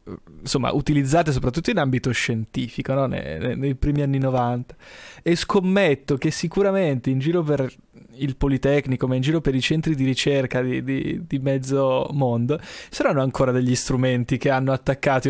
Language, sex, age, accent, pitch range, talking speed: Italian, male, 20-39, native, 130-160 Hz, 155 wpm